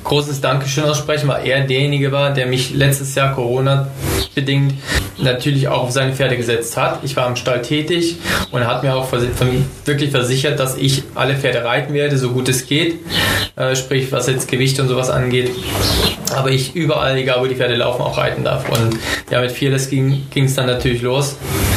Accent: German